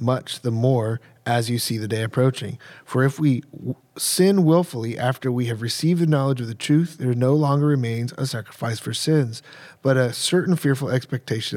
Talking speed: 185 wpm